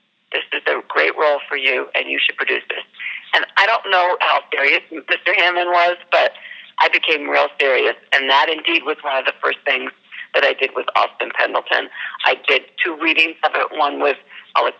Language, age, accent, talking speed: English, 50-69, American, 205 wpm